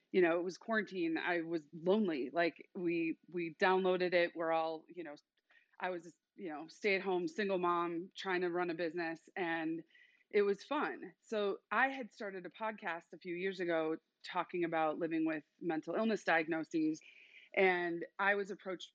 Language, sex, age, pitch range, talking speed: English, female, 30-49, 170-215 Hz, 175 wpm